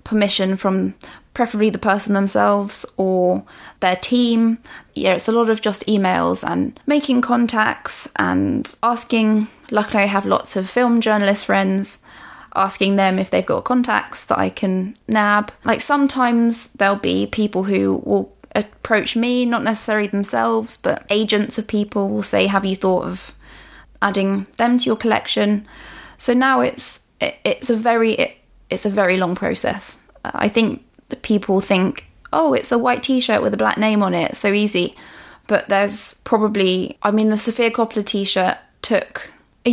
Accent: British